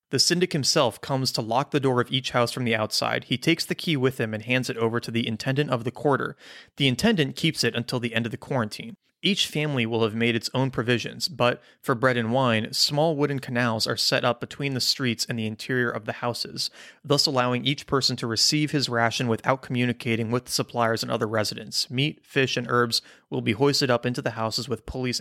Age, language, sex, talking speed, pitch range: 30-49, English, male, 230 wpm, 115-140 Hz